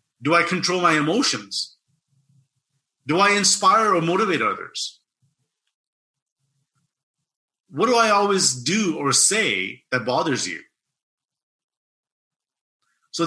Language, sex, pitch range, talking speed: English, male, 140-195 Hz, 100 wpm